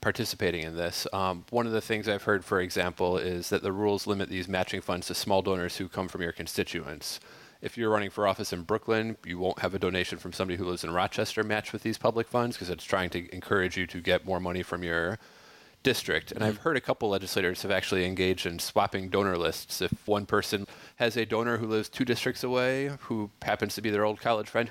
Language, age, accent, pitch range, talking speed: English, 30-49, American, 90-115 Hz, 235 wpm